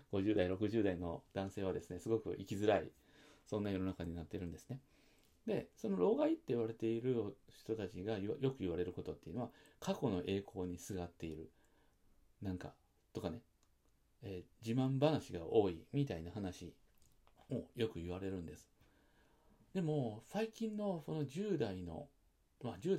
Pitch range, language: 90-135 Hz, Japanese